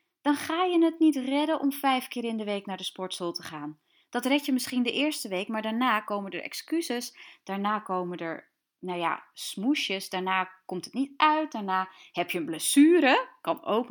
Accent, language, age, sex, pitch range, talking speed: Dutch, Dutch, 20-39, female, 185-285 Hz, 195 wpm